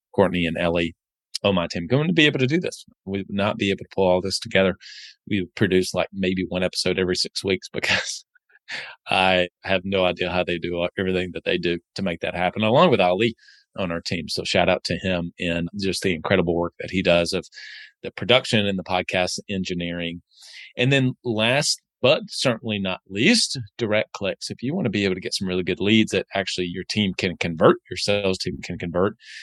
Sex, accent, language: male, American, English